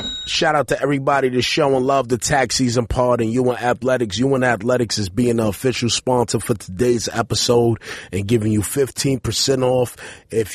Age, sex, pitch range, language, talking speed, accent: 30-49, male, 95-125 Hz, English, 170 wpm, American